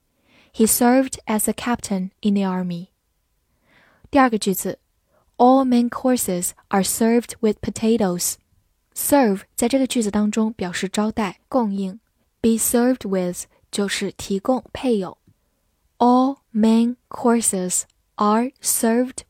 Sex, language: female, Chinese